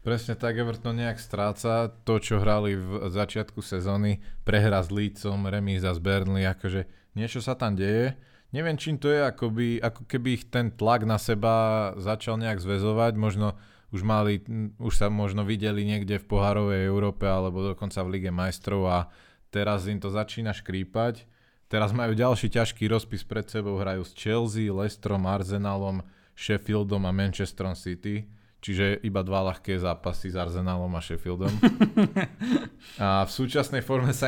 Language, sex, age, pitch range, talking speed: Slovak, male, 20-39, 100-115 Hz, 160 wpm